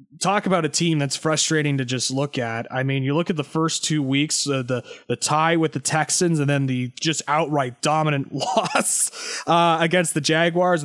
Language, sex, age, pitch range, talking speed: English, male, 20-39, 140-170 Hz, 205 wpm